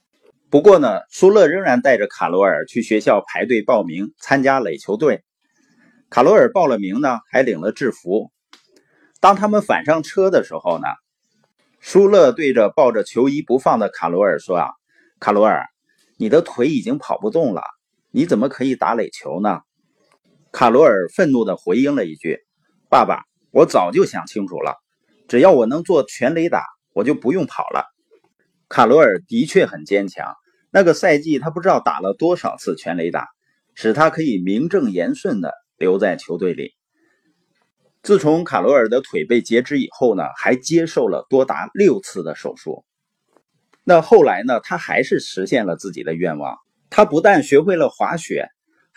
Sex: male